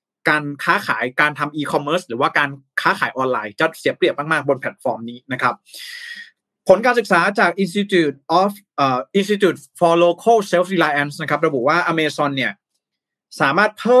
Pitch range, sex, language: 135-180 Hz, male, Thai